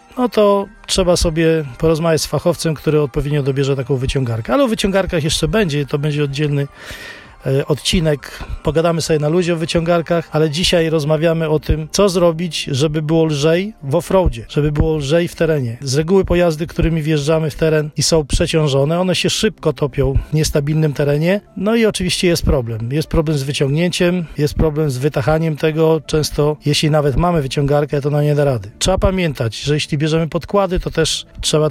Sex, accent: male, native